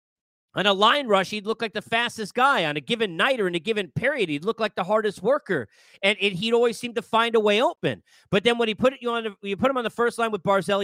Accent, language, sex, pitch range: American, English, male, 180-230 Hz